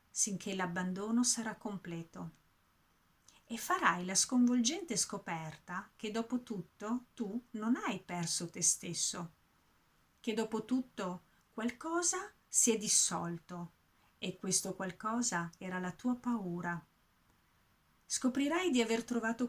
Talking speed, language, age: 110 wpm, Italian, 40-59